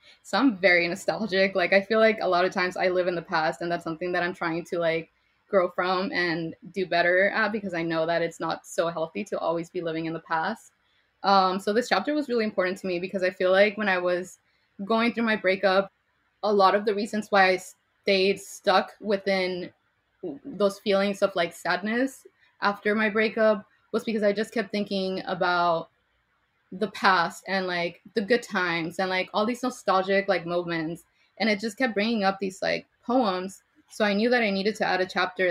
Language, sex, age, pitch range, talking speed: English, female, 20-39, 175-205 Hz, 210 wpm